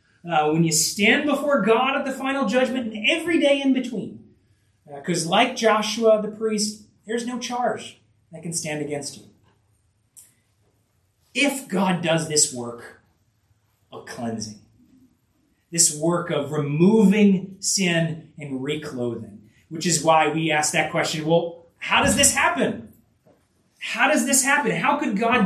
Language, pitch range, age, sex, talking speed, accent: English, 135-220 Hz, 30-49, male, 145 wpm, American